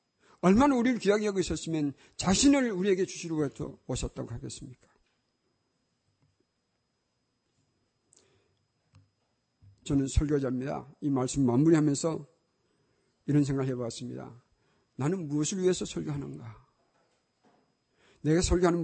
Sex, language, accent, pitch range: male, Korean, native, 125-165 Hz